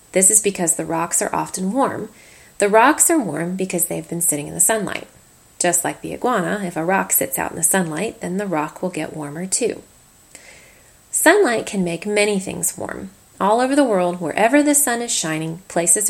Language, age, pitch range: English, 30-49, 170-225 Hz